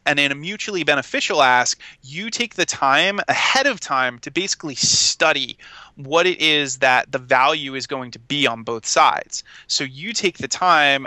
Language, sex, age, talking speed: English, male, 30-49, 185 wpm